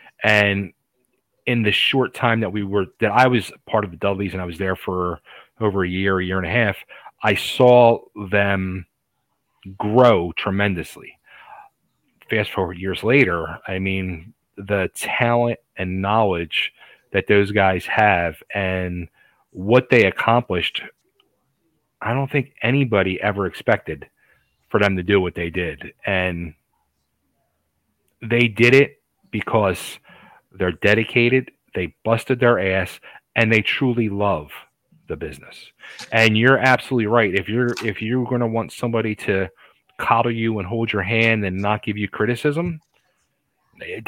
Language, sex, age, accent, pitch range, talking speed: English, male, 30-49, American, 95-120 Hz, 145 wpm